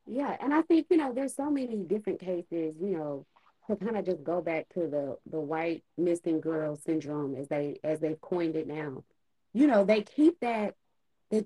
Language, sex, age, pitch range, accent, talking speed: English, female, 20-39, 155-215 Hz, American, 205 wpm